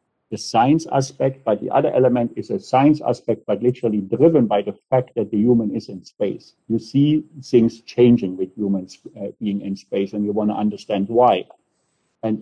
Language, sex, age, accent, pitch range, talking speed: English, male, 50-69, German, 110-135 Hz, 195 wpm